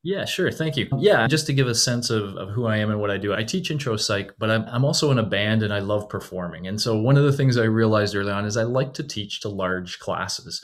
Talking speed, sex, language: 295 wpm, male, English